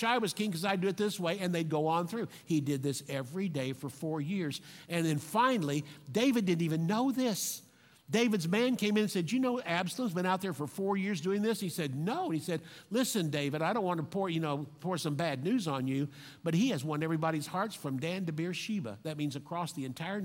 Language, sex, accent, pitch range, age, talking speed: English, male, American, 155-200 Hz, 50-69, 245 wpm